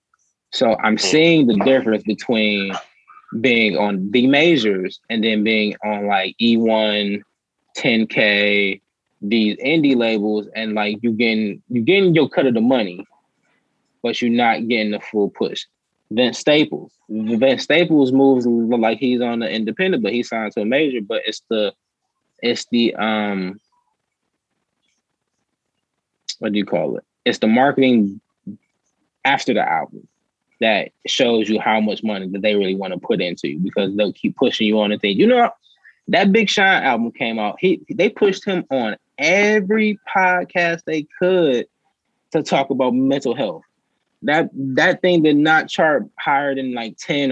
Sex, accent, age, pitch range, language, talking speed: male, American, 20-39, 105-135 Hz, English, 160 wpm